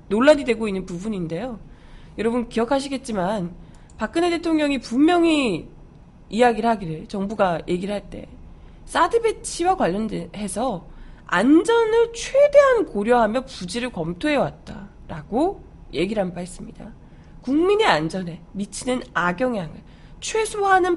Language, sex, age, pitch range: Korean, female, 20-39, 180-285 Hz